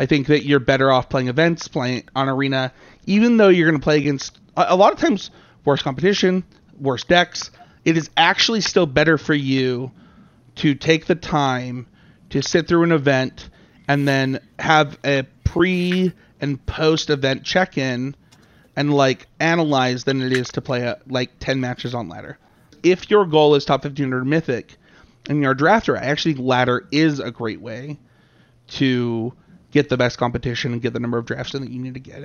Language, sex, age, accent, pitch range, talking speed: English, male, 30-49, American, 125-155 Hz, 185 wpm